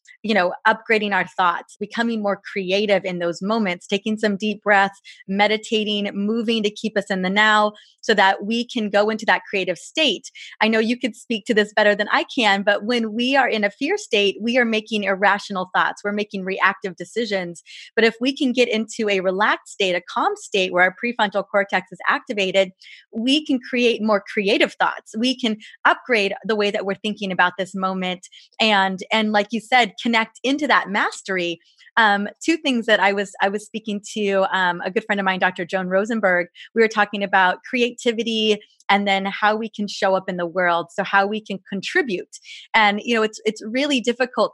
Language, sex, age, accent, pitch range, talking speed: English, female, 20-39, American, 195-230 Hz, 200 wpm